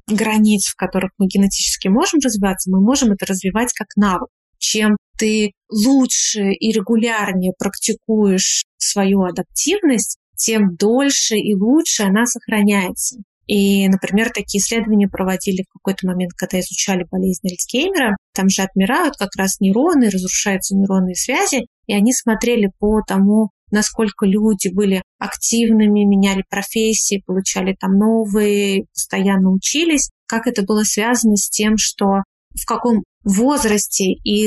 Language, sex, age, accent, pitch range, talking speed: Russian, female, 30-49, native, 195-225 Hz, 130 wpm